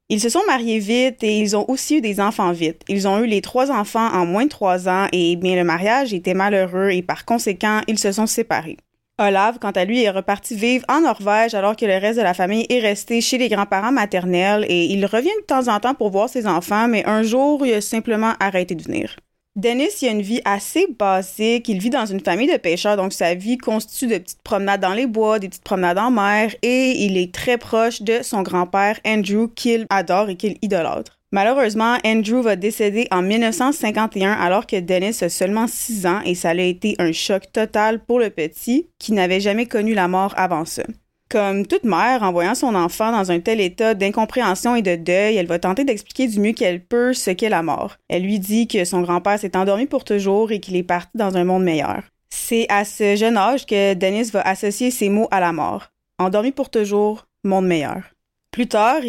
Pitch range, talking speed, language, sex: 190-230 Hz, 225 wpm, French, female